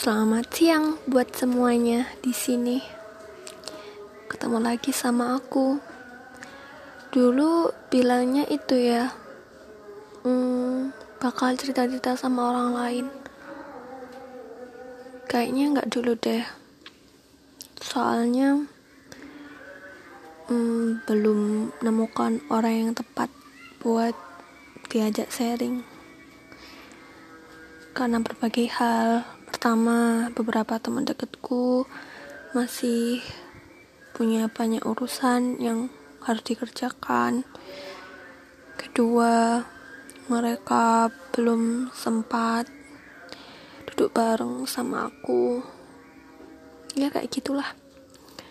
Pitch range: 230-260 Hz